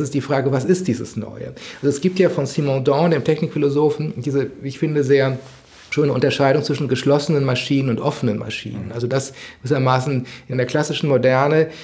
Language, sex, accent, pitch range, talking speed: German, male, German, 130-155 Hz, 175 wpm